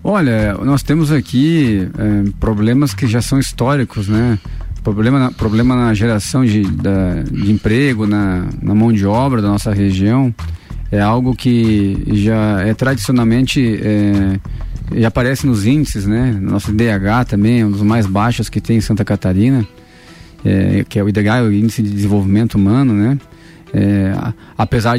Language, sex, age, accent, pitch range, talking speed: Portuguese, male, 20-39, Brazilian, 105-130 Hz, 145 wpm